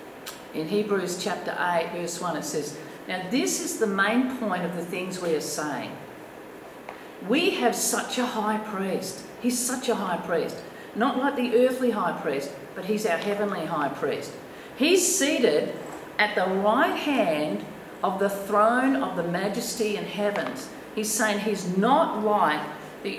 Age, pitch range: 50-69, 180-240 Hz